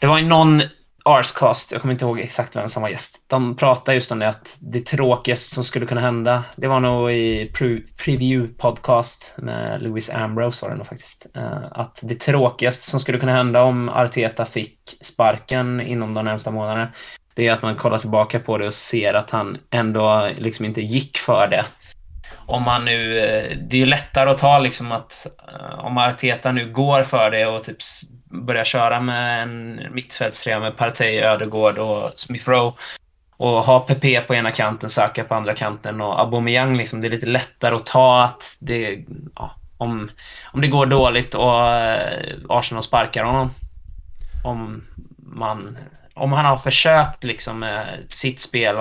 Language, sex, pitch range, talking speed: English, male, 110-130 Hz, 175 wpm